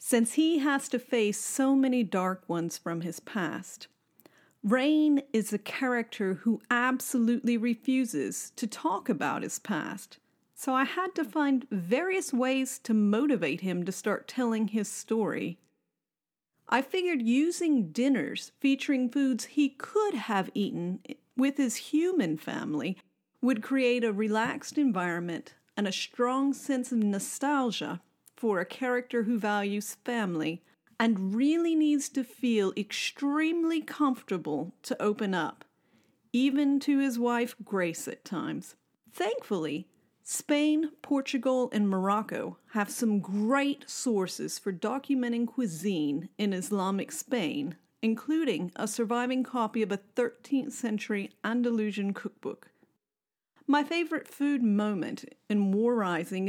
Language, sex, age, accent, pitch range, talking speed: English, female, 40-59, American, 210-275 Hz, 125 wpm